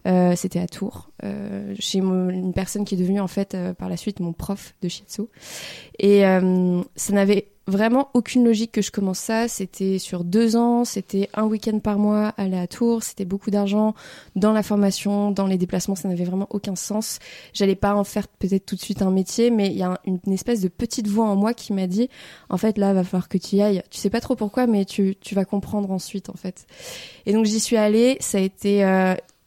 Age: 20-39